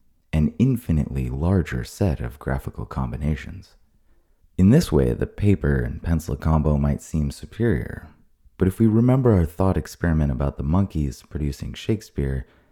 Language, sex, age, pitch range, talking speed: English, male, 30-49, 70-95 Hz, 140 wpm